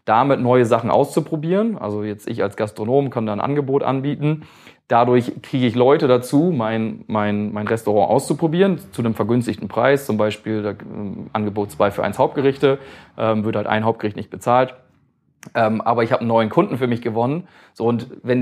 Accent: German